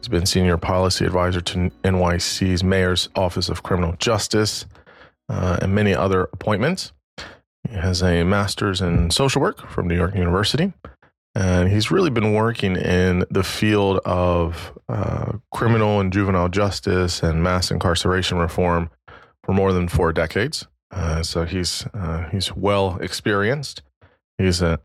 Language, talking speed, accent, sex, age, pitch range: English, 140 wpm, American, male, 20-39, 90-105 Hz